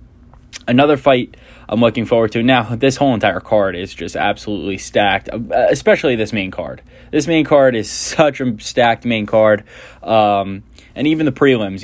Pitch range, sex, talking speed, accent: 110-130 Hz, male, 165 wpm, American